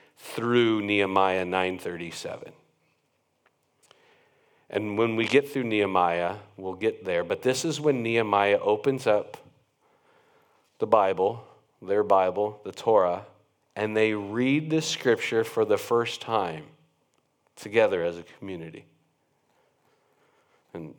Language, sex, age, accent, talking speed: English, male, 40-59, American, 110 wpm